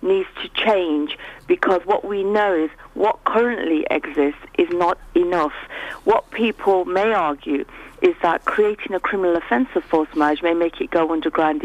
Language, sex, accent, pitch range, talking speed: English, female, British, 170-240 Hz, 165 wpm